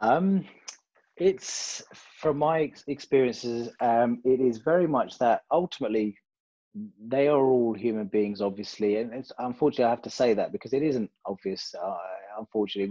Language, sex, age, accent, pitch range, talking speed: English, male, 30-49, British, 110-130 Hz, 150 wpm